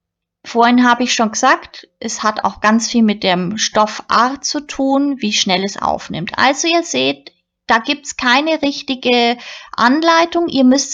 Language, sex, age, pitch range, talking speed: German, female, 20-39, 215-285 Hz, 170 wpm